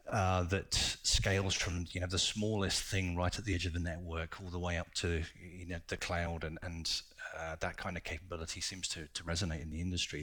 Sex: male